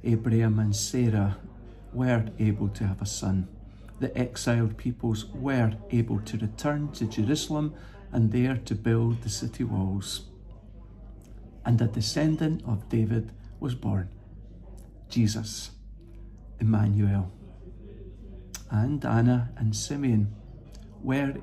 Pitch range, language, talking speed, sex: 100-120 Hz, English, 110 wpm, male